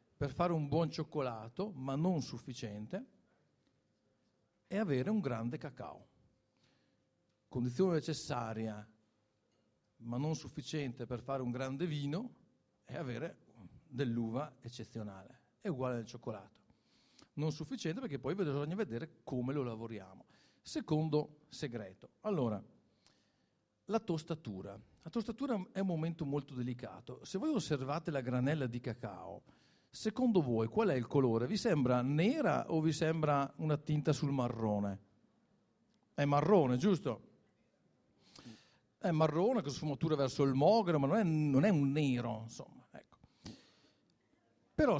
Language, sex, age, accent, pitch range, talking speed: Italian, male, 50-69, native, 120-165 Hz, 125 wpm